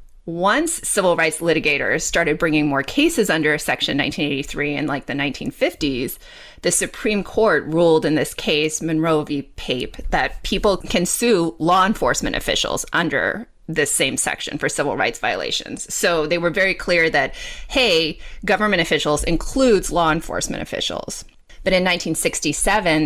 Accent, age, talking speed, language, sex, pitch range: American, 30-49, 145 wpm, English, female, 150-185 Hz